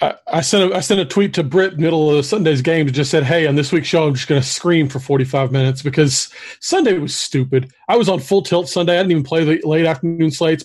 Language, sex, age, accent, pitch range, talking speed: English, male, 40-59, American, 140-170 Hz, 280 wpm